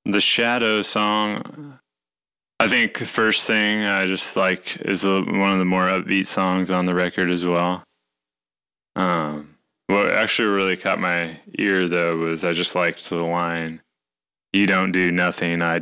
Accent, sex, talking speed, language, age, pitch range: American, male, 165 wpm, English, 20-39, 75-95 Hz